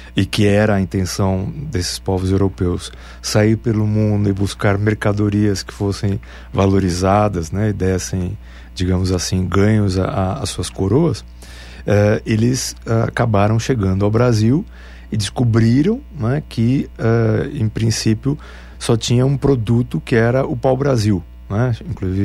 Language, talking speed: Portuguese, 130 wpm